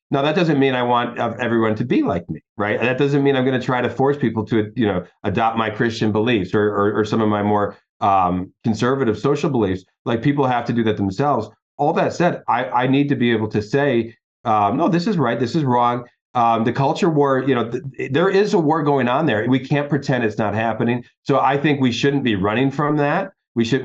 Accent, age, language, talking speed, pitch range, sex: American, 40-59, English, 245 wpm, 115-160 Hz, male